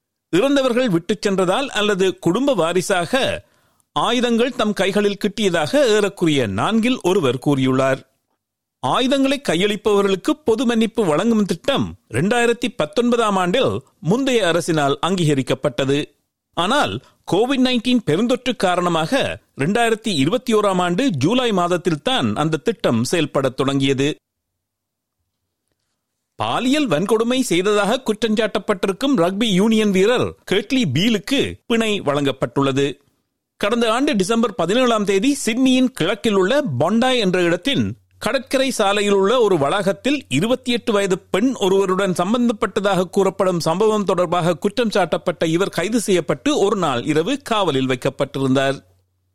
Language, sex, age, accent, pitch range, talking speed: Tamil, male, 50-69, native, 155-235 Hz, 100 wpm